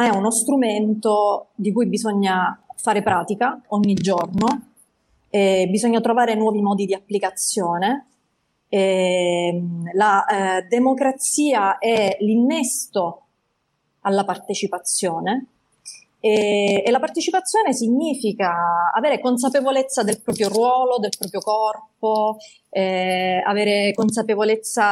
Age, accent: 30-49, native